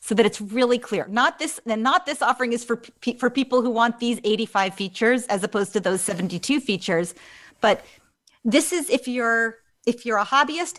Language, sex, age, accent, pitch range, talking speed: English, female, 40-59, American, 195-245 Hz, 200 wpm